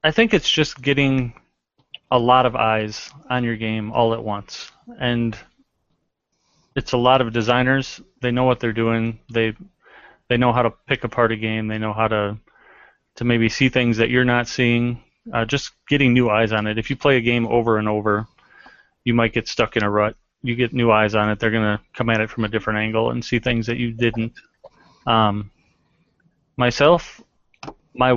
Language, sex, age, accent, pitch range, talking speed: English, male, 20-39, American, 110-125 Hz, 200 wpm